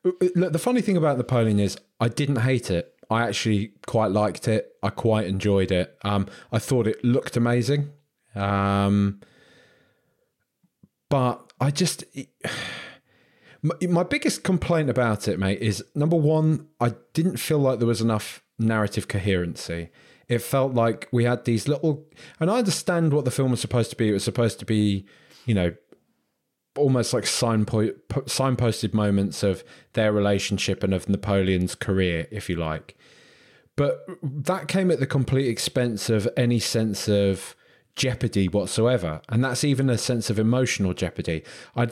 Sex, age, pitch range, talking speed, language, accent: male, 30-49, 105-135 Hz, 155 wpm, English, British